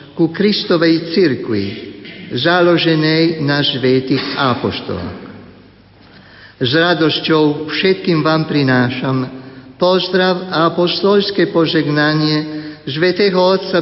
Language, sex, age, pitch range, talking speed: Slovak, male, 50-69, 145-175 Hz, 75 wpm